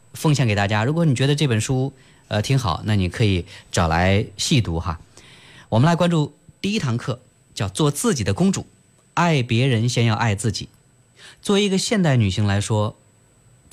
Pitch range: 105-140 Hz